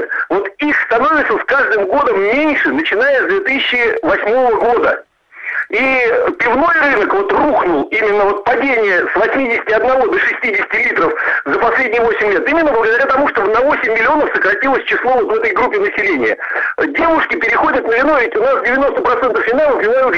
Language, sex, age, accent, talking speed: Russian, male, 60-79, native, 155 wpm